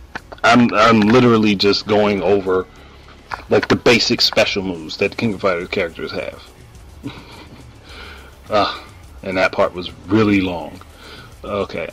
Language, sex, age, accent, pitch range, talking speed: English, male, 30-49, American, 90-110 Hz, 125 wpm